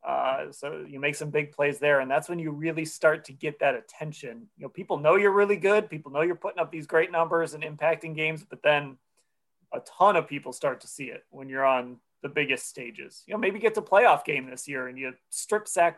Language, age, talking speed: English, 30-49, 245 wpm